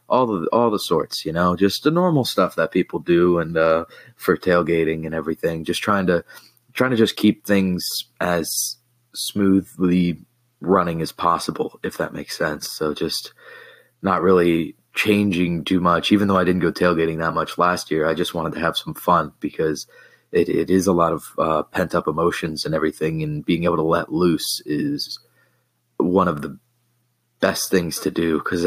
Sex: male